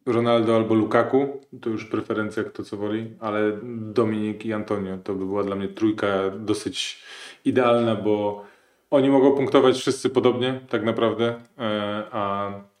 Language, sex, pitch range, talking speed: Polish, male, 100-125 Hz, 140 wpm